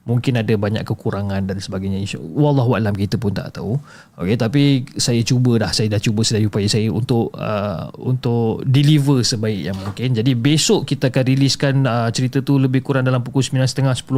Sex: male